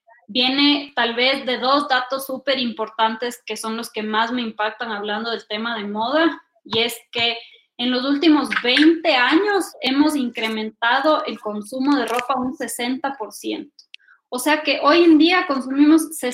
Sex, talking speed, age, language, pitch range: female, 160 wpm, 20-39, English, 230-275 Hz